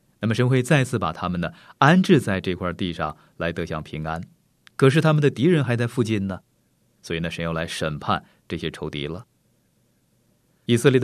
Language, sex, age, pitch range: Chinese, male, 30-49, 85-130 Hz